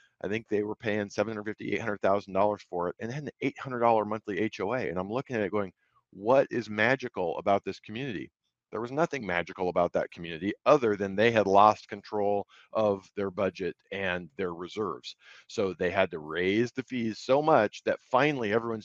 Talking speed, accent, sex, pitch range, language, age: 185 wpm, American, male, 100-115 Hz, English, 40-59